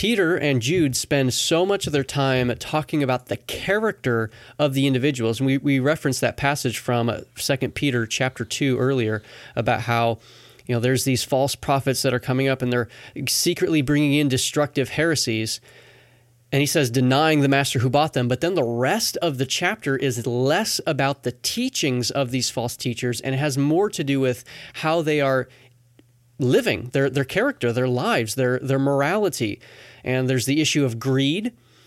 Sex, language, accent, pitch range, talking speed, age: male, English, American, 125-150 Hz, 185 wpm, 30-49